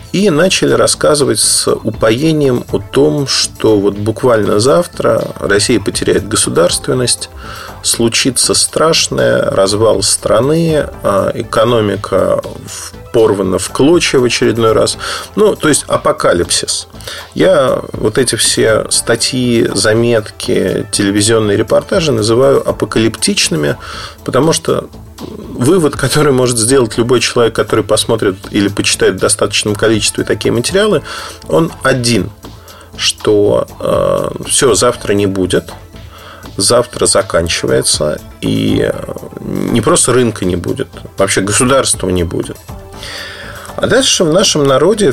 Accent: native